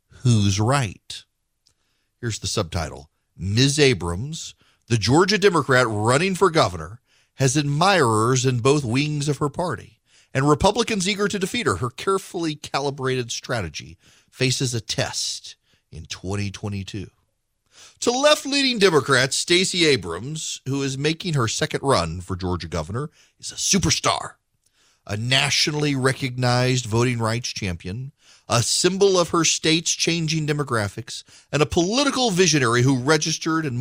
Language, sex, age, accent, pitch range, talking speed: English, male, 40-59, American, 110-155 Hz, 130 wpm